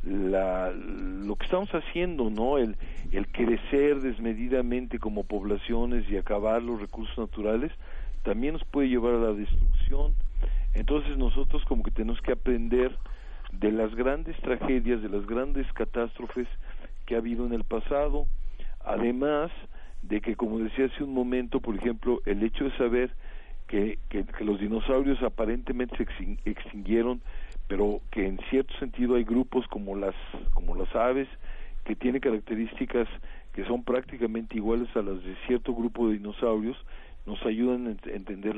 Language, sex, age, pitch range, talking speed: Spanish, male, 50-69, 105-125 Hz, 150 wpm